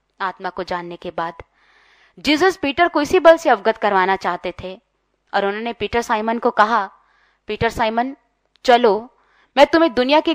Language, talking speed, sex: Hindi, 160 wpm, female